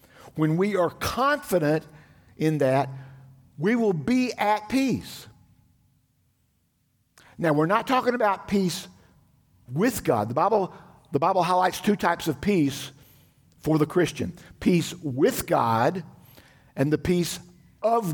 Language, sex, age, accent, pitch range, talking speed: English, male, 50-69, American, 135-180 Hz, 120 wpm